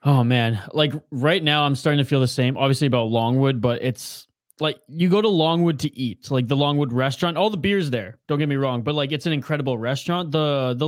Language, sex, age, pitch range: English, male, 20-39, 125-155 Hz